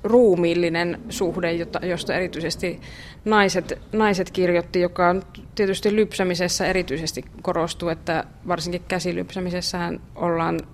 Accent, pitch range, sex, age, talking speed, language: native, 165-185 Hz, female, 20-39, 95 wpm, Finnish